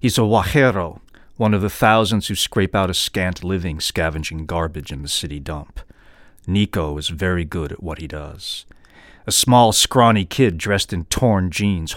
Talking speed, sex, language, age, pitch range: 175 wpm, male, English, 40-59, 85-100 Hz